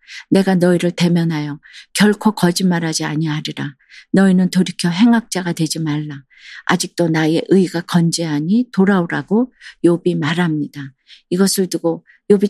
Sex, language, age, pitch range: female, Korean, 50-69, 155-190 Hz